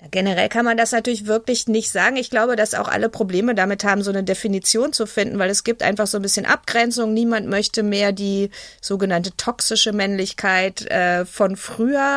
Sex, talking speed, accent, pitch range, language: female, 190 wpm, German, 195-225 Hz, German